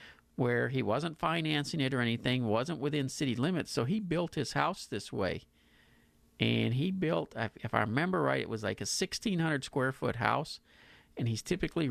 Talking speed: 170 wpm